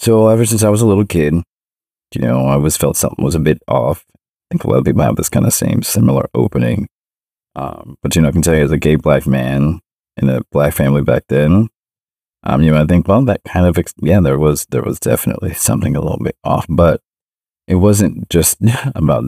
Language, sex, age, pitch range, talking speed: English, male, 30-49, 75-95 Hz, 230 wpm